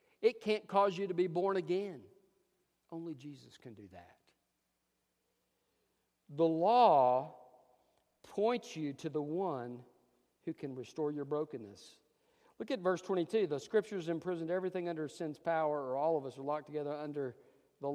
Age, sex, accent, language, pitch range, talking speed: 50-69, male, American, English, 120-165 Hz, 150 wpm